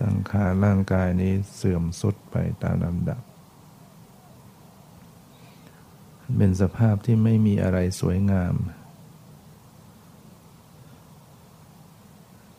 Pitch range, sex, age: 95-135 Hz, male, 60-79